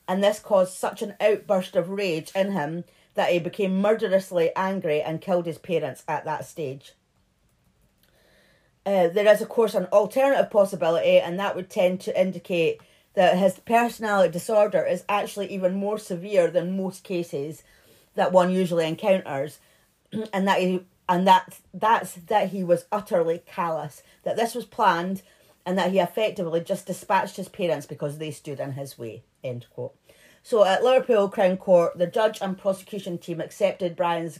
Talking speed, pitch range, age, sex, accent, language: 165 wpm, 175-205 Hz, 40-59, female, British, English